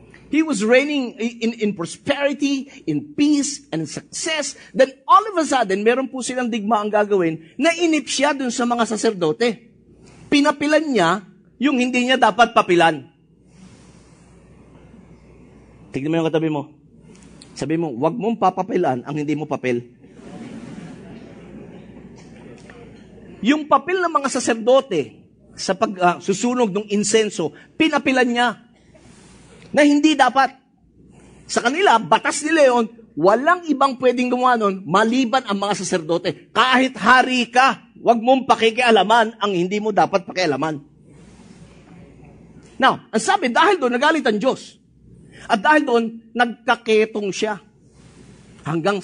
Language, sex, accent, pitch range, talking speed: English, male, Filipino, 185-265 Hz, 125 wpm